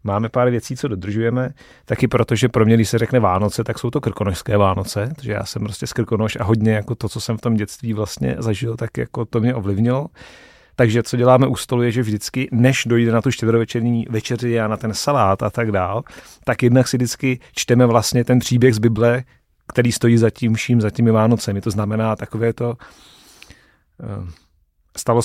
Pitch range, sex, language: 110-120 Hz, male, Czech